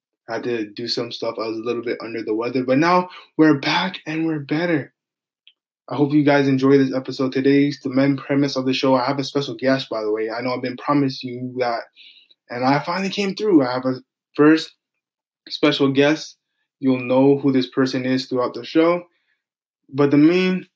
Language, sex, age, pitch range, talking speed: English, male, 10-29, 125-155 Hz, 210 wpm